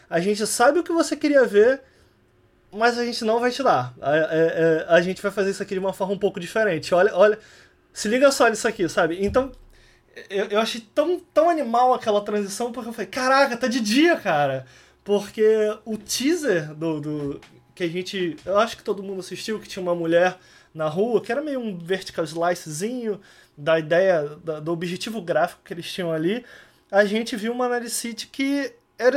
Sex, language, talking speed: male, Portuguese, 200 wpm